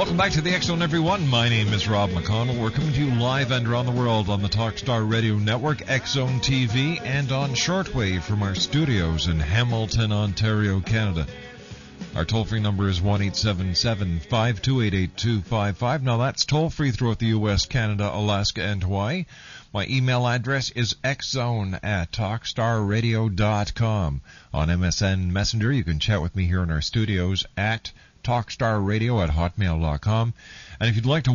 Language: English